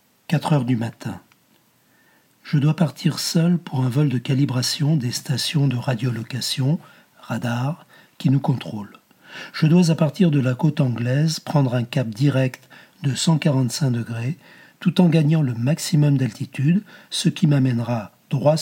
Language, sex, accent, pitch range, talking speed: French, male, French, 130-160 Hz, 150 wpm